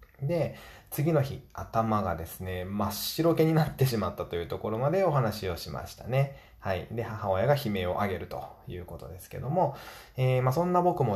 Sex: male